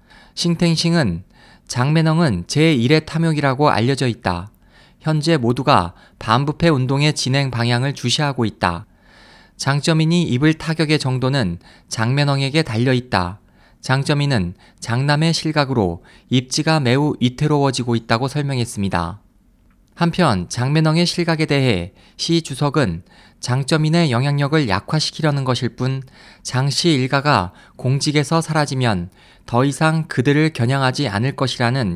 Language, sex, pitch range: Korean, male, 120-155 Hz